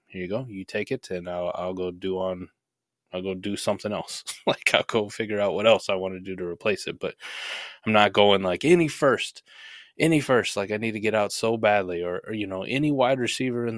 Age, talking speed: 20-39, 245 wpm